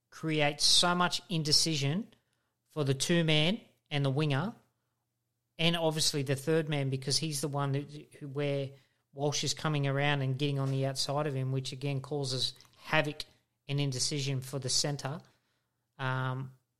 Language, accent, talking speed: English, Australian, 155 wpm